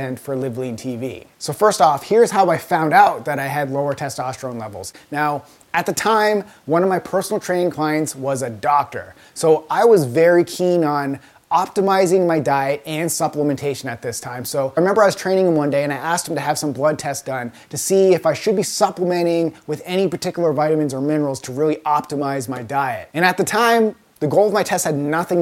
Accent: American